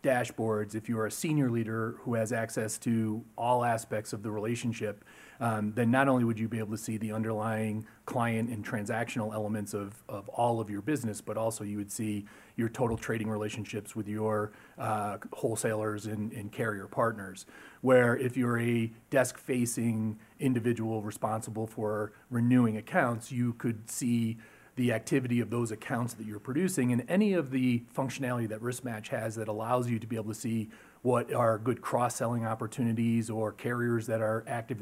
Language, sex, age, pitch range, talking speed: English, male, 30-49, 110-125 Hz, 175 wpm